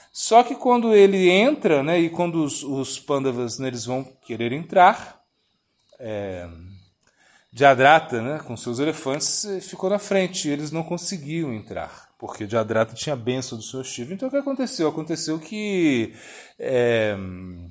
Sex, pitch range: male, 115-180 Hz